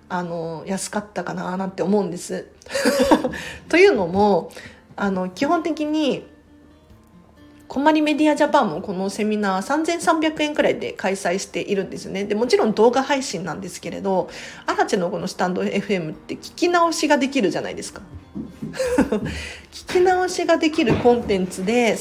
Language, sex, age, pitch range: Japanese, female, 40-59, 185-270 Hz